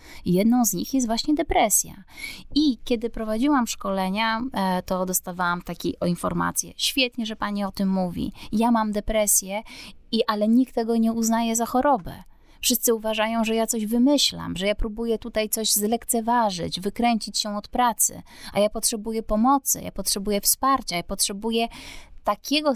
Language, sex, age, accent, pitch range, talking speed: Polish, female, 20-39, native, 190-240 Hz, 150 wpm